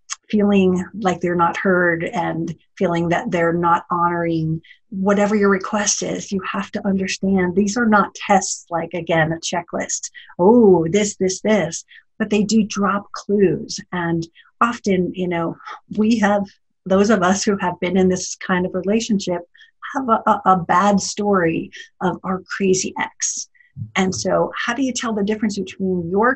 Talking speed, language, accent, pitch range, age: 165 wpm, English, American, 180-225 Hz, 50-69